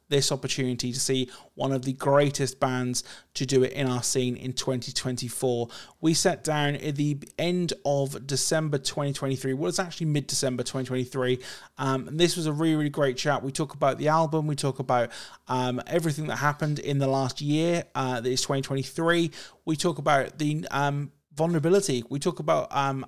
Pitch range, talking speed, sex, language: 130-155 Hz, 180 wpm, male, English